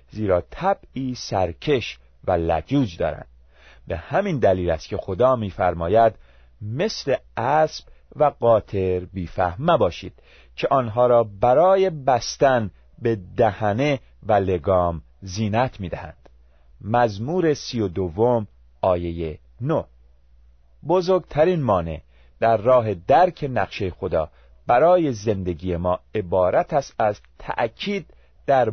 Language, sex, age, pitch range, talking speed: Persian, male, 40-59, 80-125 Hz, 110 wpm